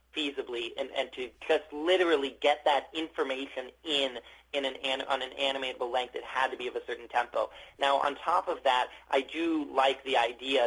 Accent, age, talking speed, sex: American, 30-49, 190 wpm, male